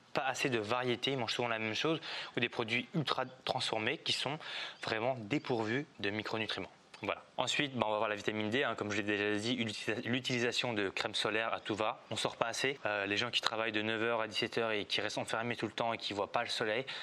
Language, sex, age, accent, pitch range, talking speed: French, male, 20-39, French, 105-125 Hz, 240 wpm